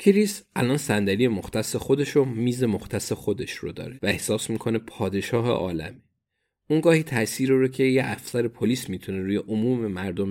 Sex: male